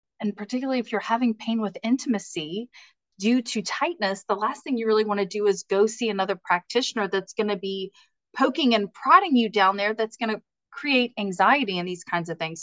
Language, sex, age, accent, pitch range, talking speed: English, female, 30-49, American, 175-230 Hz, 210 wpm